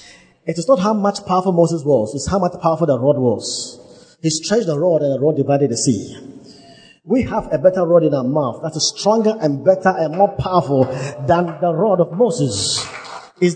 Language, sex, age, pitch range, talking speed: English, male, 50-69, 135-185 Hz, 210 wpm